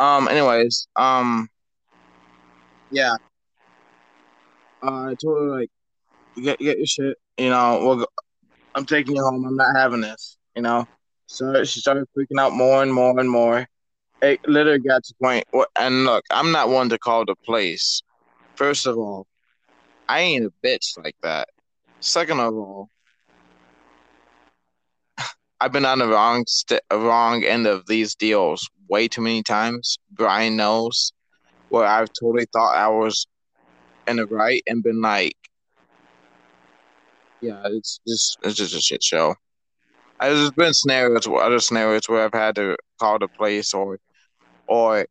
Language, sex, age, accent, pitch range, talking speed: English, male, 20-39, American, 105-140 Hz, 155 wpm